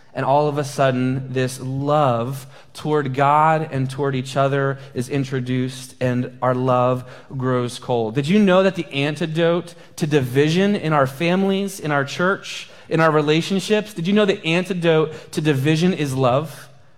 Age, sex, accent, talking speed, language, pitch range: 30-49, male, American, 165 wpm, English, 145-205 Hz